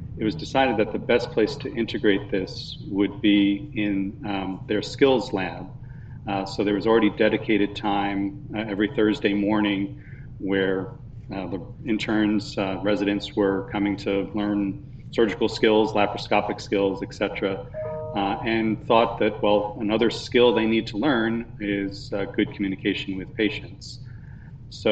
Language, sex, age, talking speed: English, male, 40-59, 145 wpm